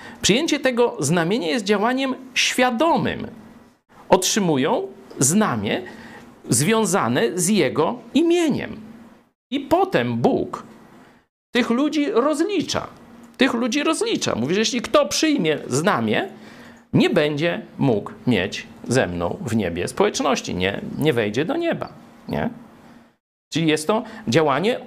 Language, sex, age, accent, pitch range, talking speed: Polish, male, 50-69, native, 165-255 Hz, 110 wpm